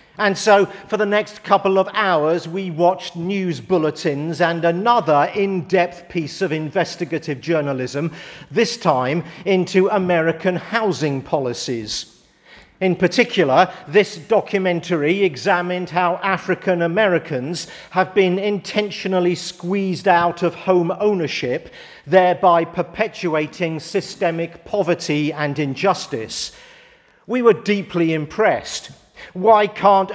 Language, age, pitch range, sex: English, 50-69, 165-205 Hz, male